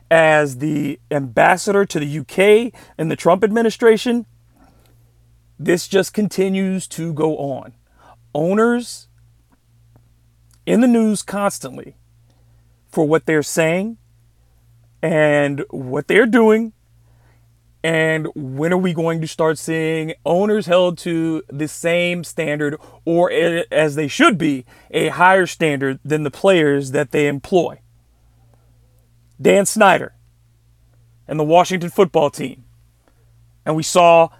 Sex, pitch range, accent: male, 115-175 Hz, American